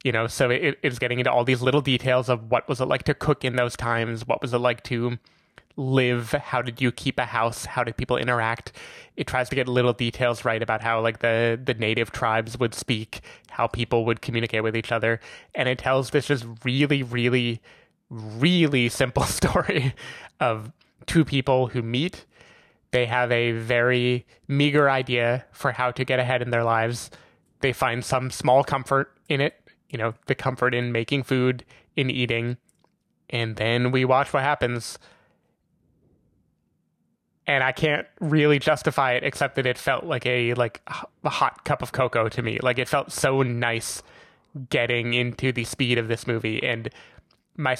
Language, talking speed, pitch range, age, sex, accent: English, 180 wpm, 120-135 Hz, 20-39, male, American